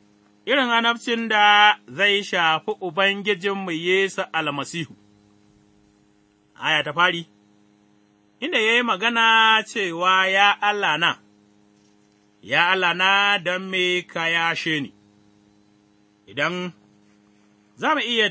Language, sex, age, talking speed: English, male, 30-49, 80 wpm